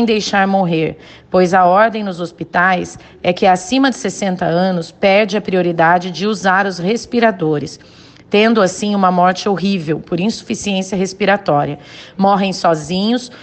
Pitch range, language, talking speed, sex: 175-215 Hz, Portuguese, 135 wpm, female